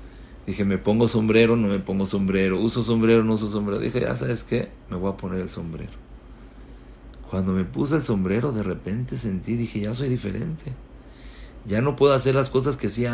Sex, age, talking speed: male, 50-69, 195 wpm